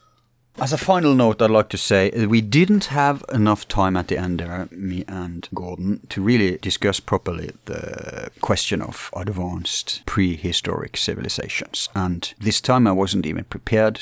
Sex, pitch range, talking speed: male, 90-110 Hz, 160 wpm